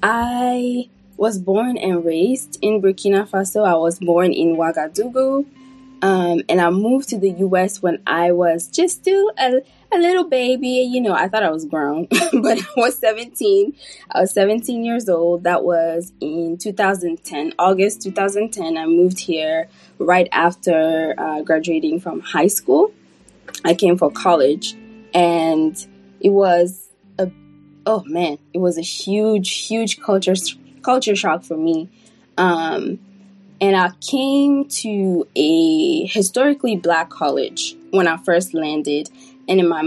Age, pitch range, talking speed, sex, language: 20-39, 170-225 Hz, 145 wpm, female, English